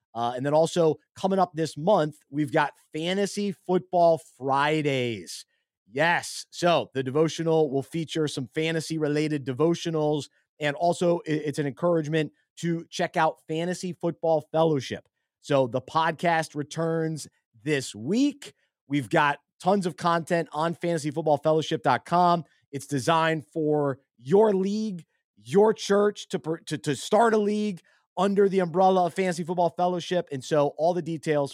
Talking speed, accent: 135 wpm, American